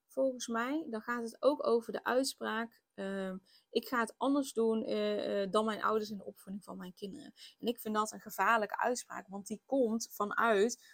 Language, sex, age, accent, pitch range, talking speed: Dutch, female, 20-39, Dutch, 185-225 Hz, 195 wpm